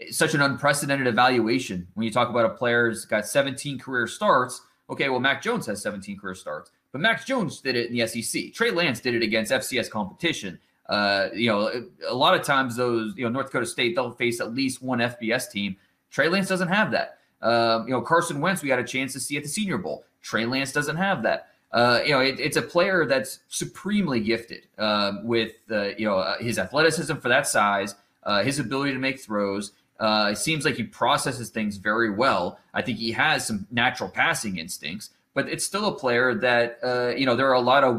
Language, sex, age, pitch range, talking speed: English, male, 20-39, 110-145 Hz, 220 wpm